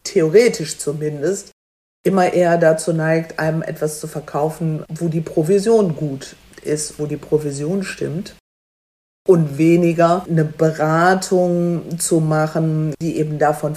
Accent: German